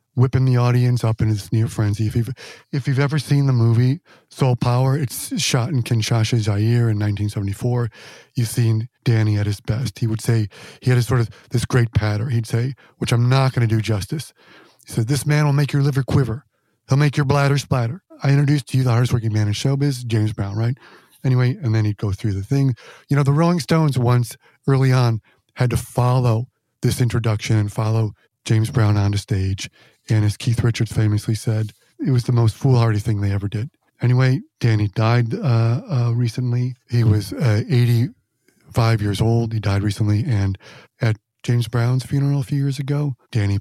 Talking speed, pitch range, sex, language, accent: 200 wpm, 110-130 Hz, male, English, American